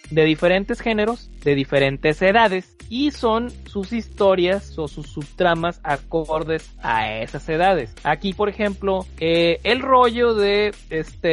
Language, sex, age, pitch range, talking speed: Spanish, male, 30-49, 150-200 Hz, 130 wpm